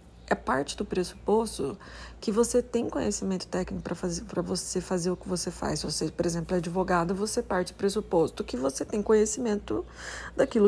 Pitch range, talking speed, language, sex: 170-205 Hz, 175 wpm, Portuguese, female